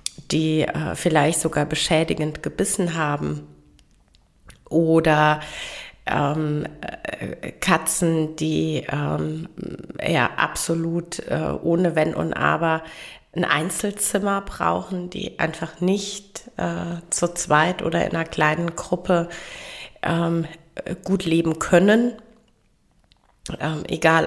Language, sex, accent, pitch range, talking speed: German, female, German, 150-185 Hz, 95 wpm